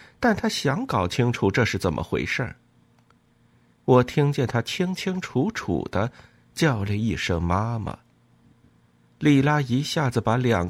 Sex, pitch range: male, 100-145 Hz